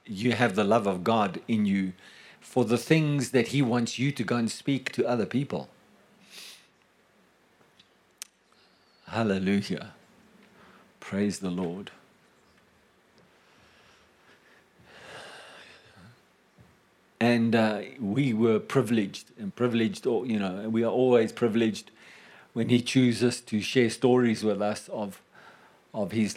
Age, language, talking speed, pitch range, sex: 50-69, English, 120 wpm, 110-125 Hz, male